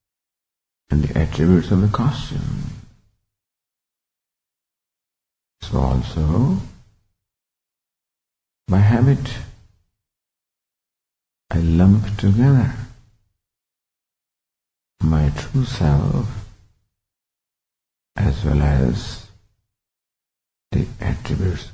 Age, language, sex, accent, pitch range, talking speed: 50-69, English, female, American, 75-110 Hz, 60 wpm